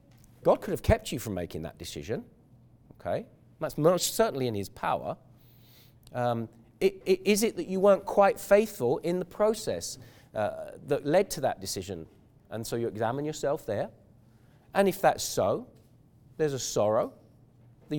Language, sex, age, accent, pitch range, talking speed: English, male, 40-59, British, 115-155 Hz, 155 wpm